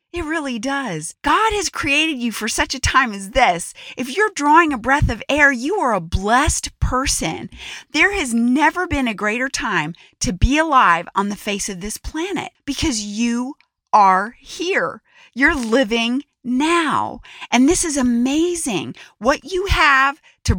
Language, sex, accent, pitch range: English, female, American, 235-330 Hz